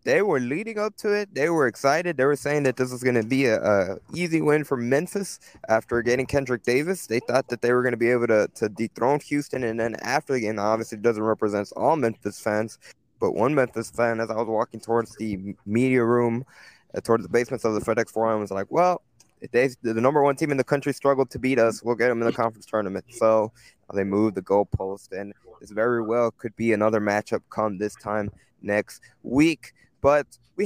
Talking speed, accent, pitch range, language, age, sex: 225 wpm, American, 110-135 Hz, English, 20-39, male